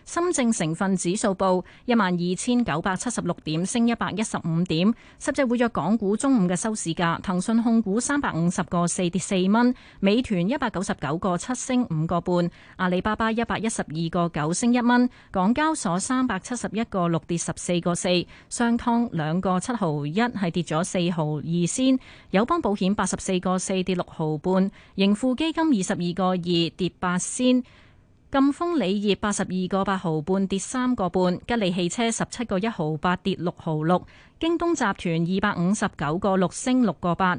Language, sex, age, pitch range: Chinese, female, 30-49, 175-235 Hz